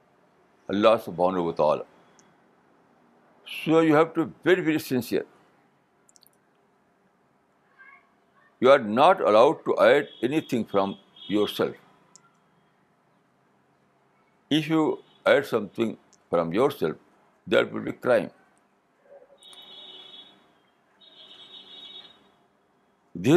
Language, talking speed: Urdu, 80 wpm